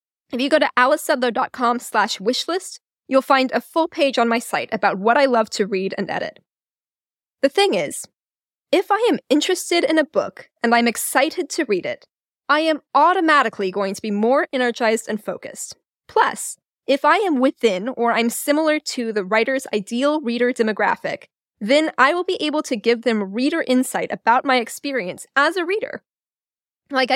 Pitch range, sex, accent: 225-300 Hz, female, American